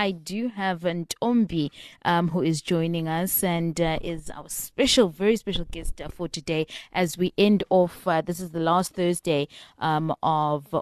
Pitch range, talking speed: 155-185 Hz, 170 wpm